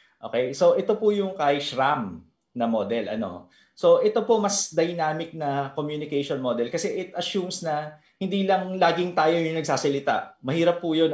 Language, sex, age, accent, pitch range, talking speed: Filipino, male, 20-39, native, 130-180 Hz, 160 wpm